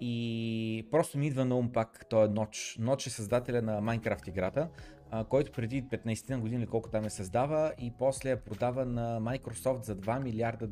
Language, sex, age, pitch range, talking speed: Bulgarian, male, 30-49, 115-155 Hz, 185 wpm